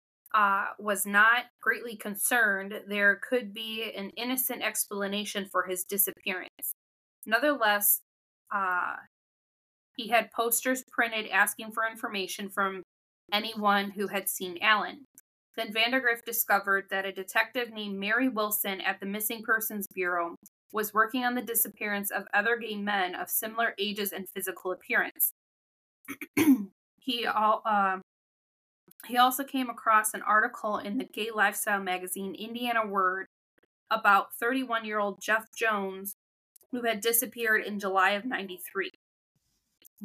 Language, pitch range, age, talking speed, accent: English, 200-235 Hz, 20-39, 125 wpm, American